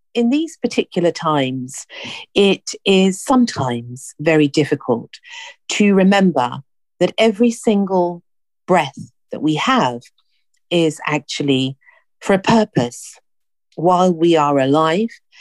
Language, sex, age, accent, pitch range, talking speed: English, female, 50-69, British, 140-210 Hz, 105 wpm